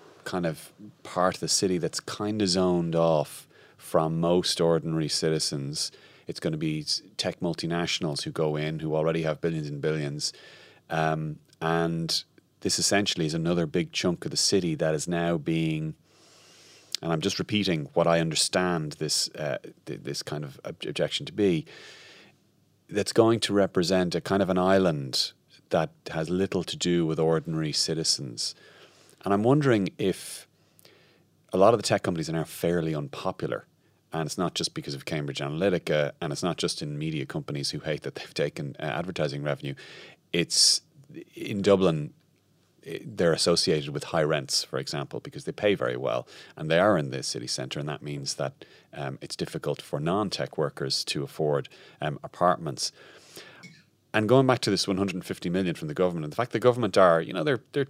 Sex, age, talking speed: male, 30-49, 175 wpm